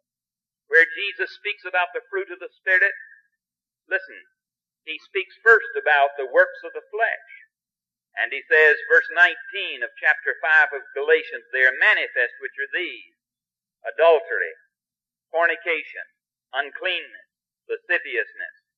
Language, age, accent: English, 50-69, American